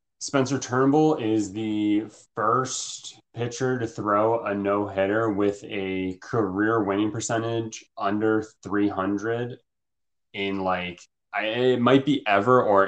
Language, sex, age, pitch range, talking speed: English, male, 20-39, 95-115 Hz, 110 wpm